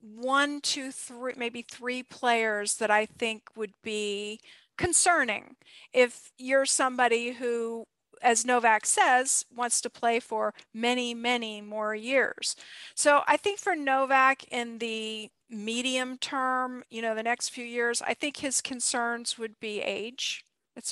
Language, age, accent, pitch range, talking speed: English, 50-69, American, 220-260 Hz, 145 wpm